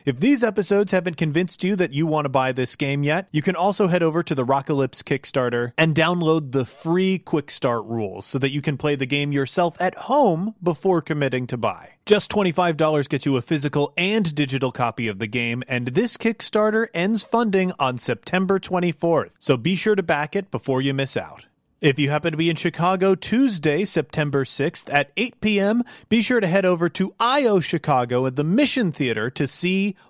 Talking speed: 200 wpm